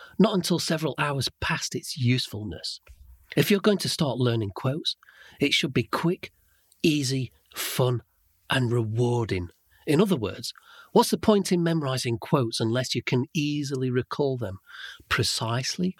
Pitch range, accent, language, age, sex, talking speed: 110-155 Hz, British, English, 40-59, male, 145 wpm